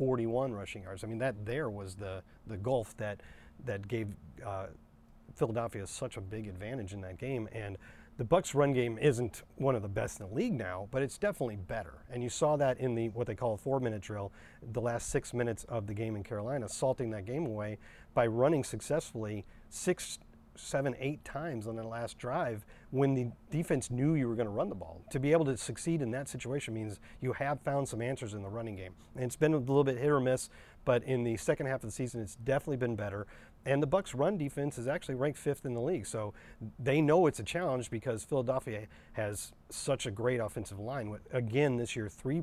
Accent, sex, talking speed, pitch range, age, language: American, male, 220 wpm, 105-135 Hz, 40-59, English